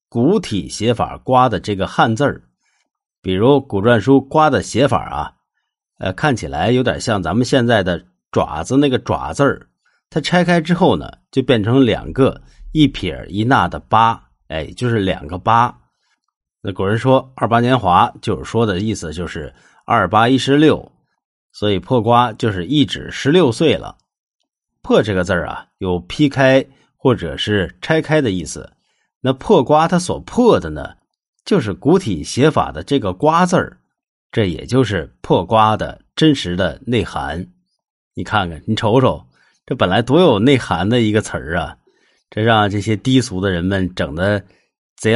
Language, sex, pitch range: Chinese, male, 90-130 Hz